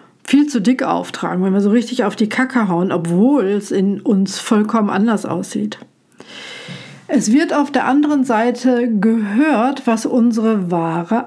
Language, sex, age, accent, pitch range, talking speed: German, female, 50-69, German, 190-240 Hz, 155 wpm